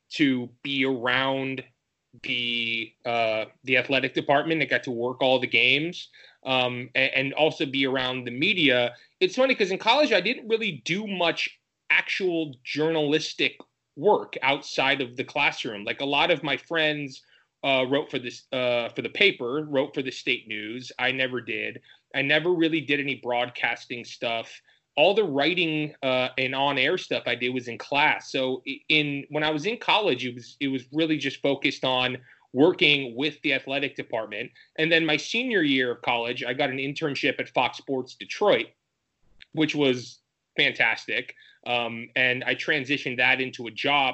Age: 30-49